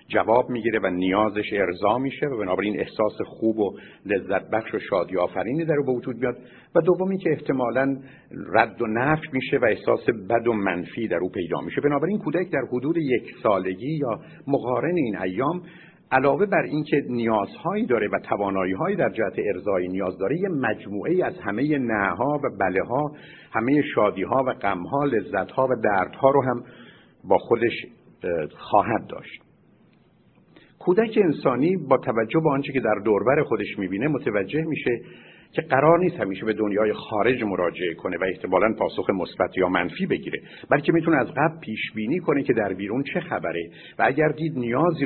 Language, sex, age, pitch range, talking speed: Persian, male, 50-69, 110-155 Hz, 170 wpm